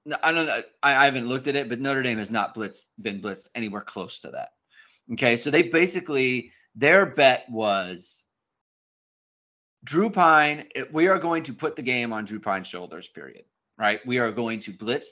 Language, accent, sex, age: English, American, male, 30-49